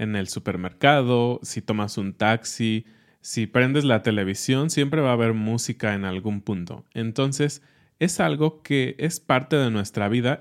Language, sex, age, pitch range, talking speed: Spanish, male, 20-39, 105-135 Hz, 160 wpm